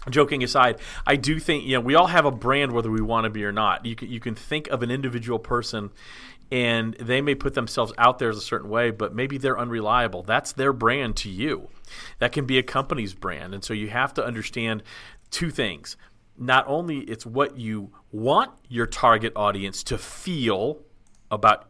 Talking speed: 205 wpm